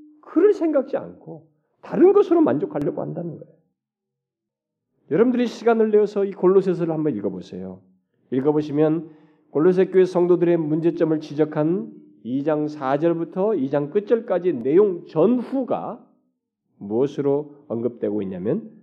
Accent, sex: native, male